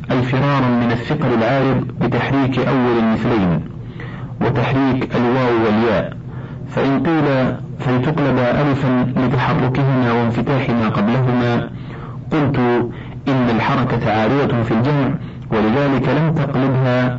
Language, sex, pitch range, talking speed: Arabic, male, 120-140 Hz, 95 wpm